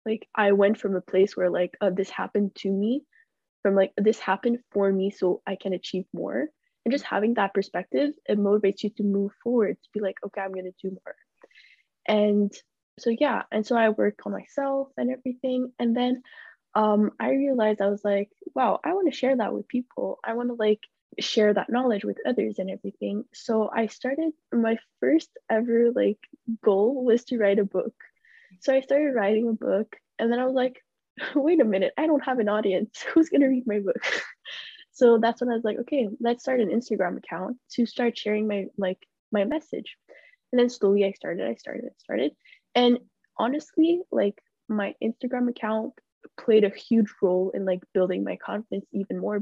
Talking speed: 200 wpm